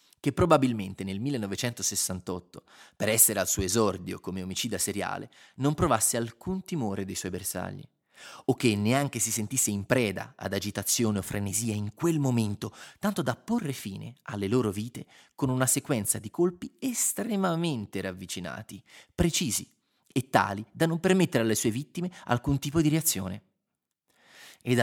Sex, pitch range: male, 100-130 Hz